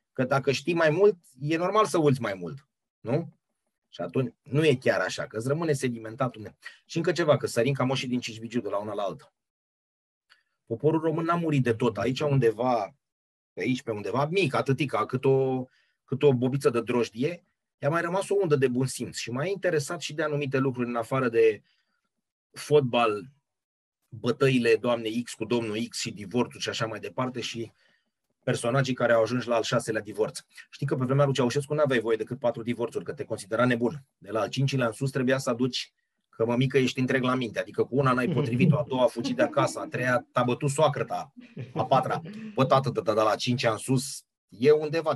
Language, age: Romanian, 30-49